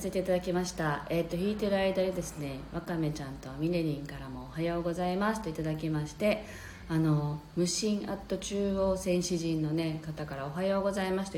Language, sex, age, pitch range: Japanese, female, 40-59, 165-250 Hz